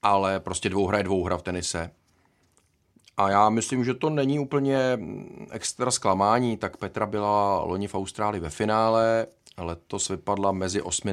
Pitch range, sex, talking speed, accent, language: 90-110 Hz, male, 155 wpm, native, Czech